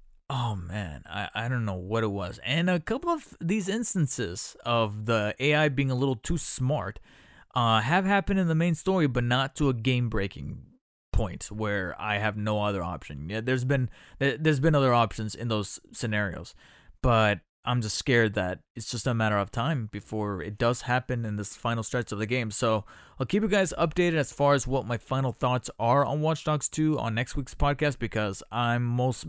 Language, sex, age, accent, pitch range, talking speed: English, male, 20-39, American, 105-145 Hz, 205 wpm